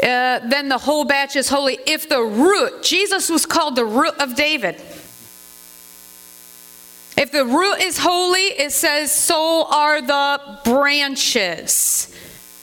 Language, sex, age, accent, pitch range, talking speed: English, female, 40-59, American, 240-340 Hz, 135 wpm